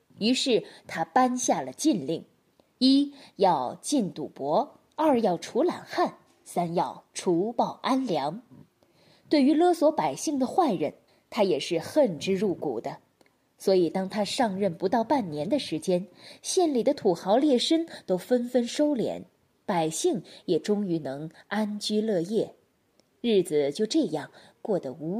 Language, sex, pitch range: Chinese, female, 185-275 Hz